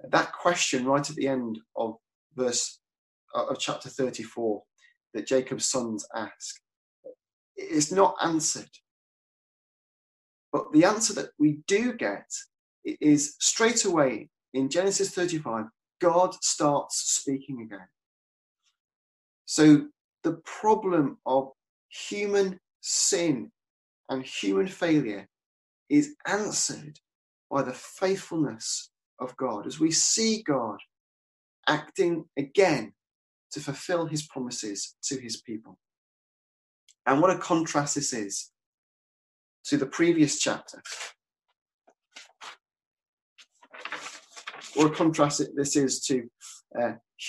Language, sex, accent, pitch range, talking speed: English, male, British, 130-185 Hz, 105 wpm